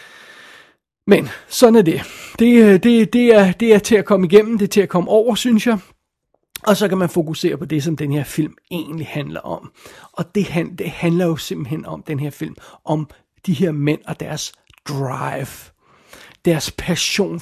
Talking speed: 190 wpm